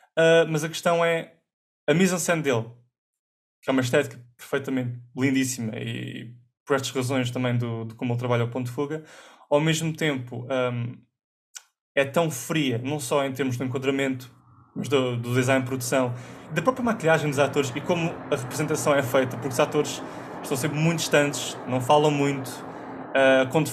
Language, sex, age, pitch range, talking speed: English, male, 20-39, 130-160 Hz, 170 wpm